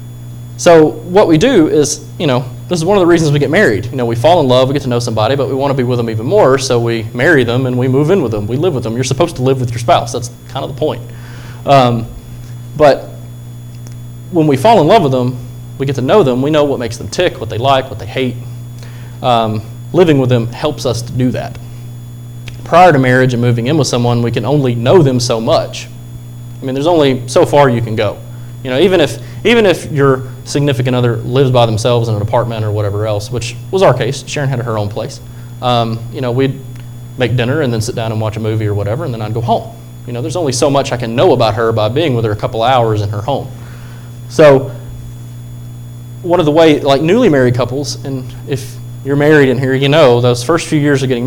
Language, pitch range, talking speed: English, 120-135 Hz, 250 wpm